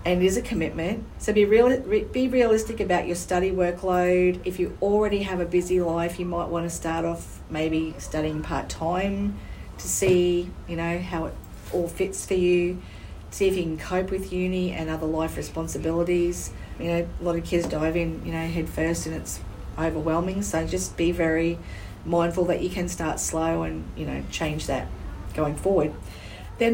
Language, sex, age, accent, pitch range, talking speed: English, female, 40-59, Australian, 165-190 Hz, 190 wpm